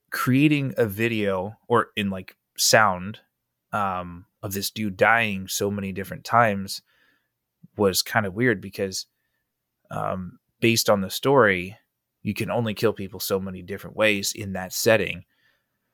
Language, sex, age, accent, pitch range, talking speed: English, male, 30-49, American, 90-105 Hz, 145 wpm